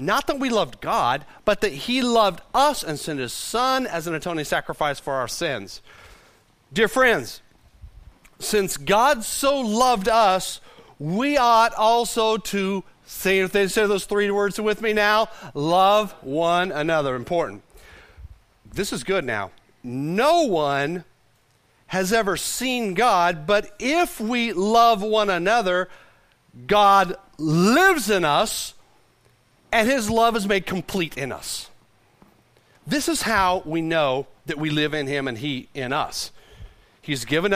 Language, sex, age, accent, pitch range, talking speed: English, male, 40-59, American, 155-225 Hz, 140 wpm